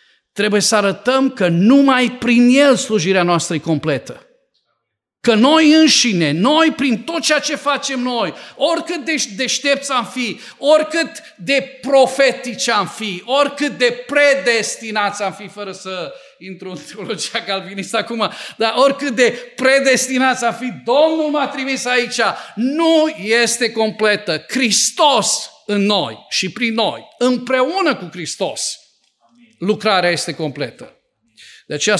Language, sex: Romanian, male